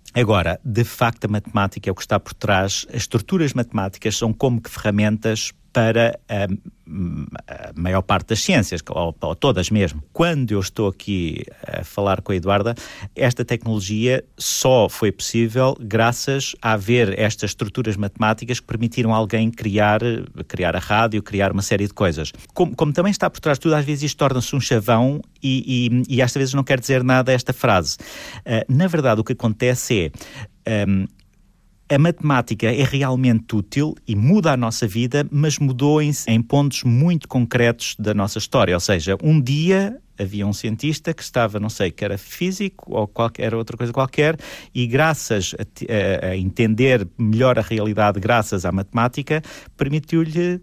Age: 50-69